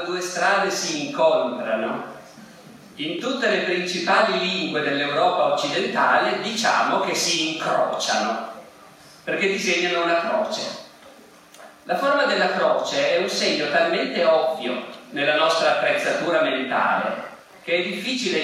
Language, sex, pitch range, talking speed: Italian, male, 155-200 Hz, 115 wpm